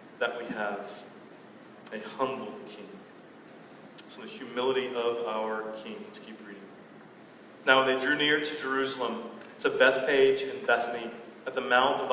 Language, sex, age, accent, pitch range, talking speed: English, male, 30-49, American, 120-135 Hz, 150 wpm